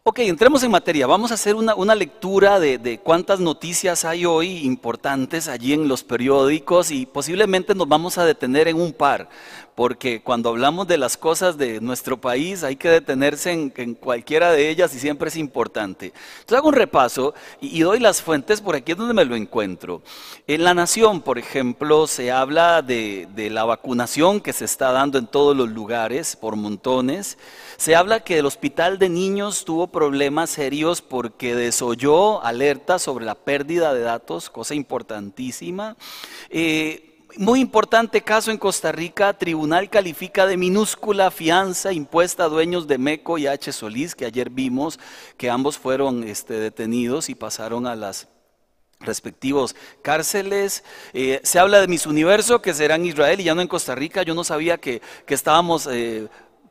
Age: 40-59